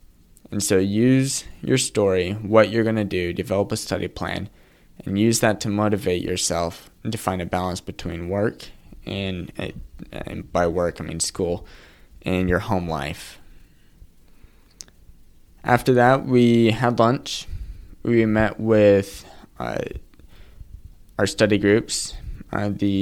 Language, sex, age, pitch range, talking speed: English, male, 20-39, 90-105 Hz, 135 wpm